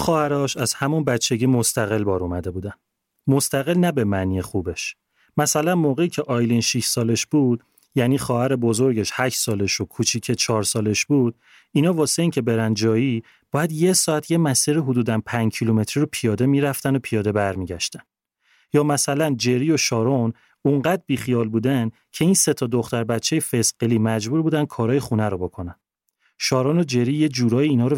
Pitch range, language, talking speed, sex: 110-140 Hz, Persian, 165 wpm, male